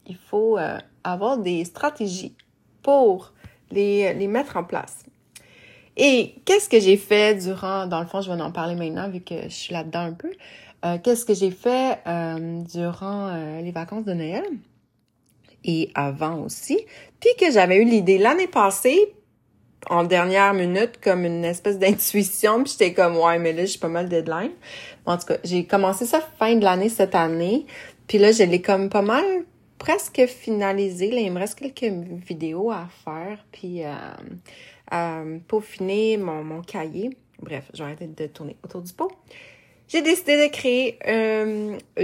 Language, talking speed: French, 175 wpm